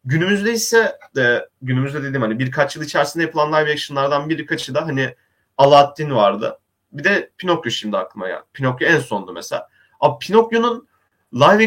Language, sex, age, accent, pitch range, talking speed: Turkish, male, 30-49, native, 130-165 Hz, 150 wpm